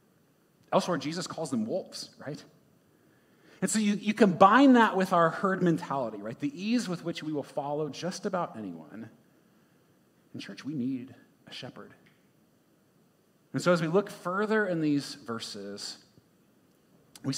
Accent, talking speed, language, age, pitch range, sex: American, 150 wpm, English, 30-49, 135-190 Hz, male